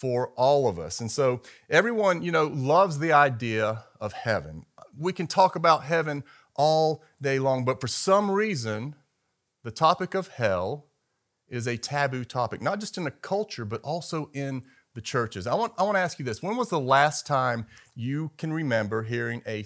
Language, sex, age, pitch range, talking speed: English, male, 40-59, 115-155 Hz, 190 wpm